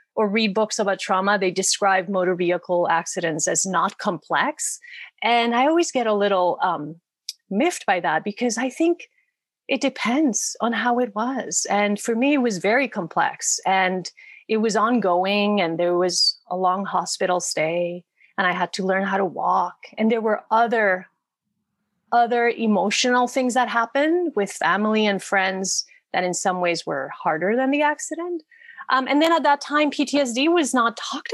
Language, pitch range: English, 195-270 Hz